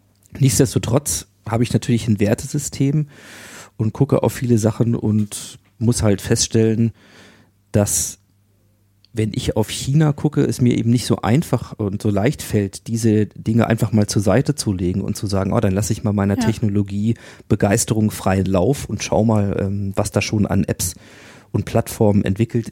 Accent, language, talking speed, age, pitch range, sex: German, German, 165 wpm, 40-59, 100-115 Hz, male